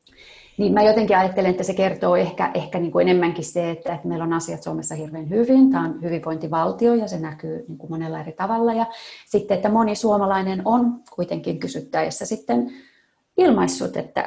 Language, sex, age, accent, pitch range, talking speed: Finnish, female, 30-49, native, 165-220 Hz, 175 wpm